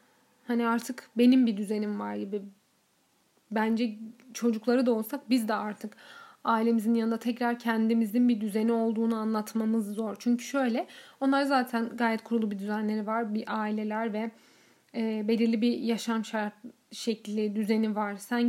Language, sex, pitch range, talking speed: Turkish, female, 220-245 Hz, 145 wpm